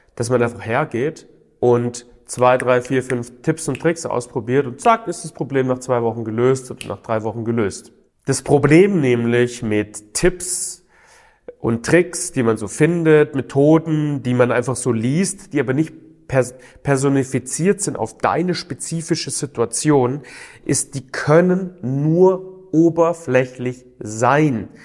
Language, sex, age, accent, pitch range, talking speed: German, male, 30-49, German, 120-160 Hz, 145 wpm